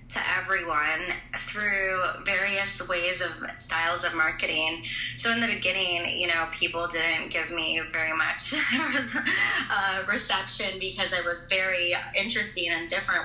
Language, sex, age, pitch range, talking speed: English, female, 20-39, 160-175 Hz, 135 wpm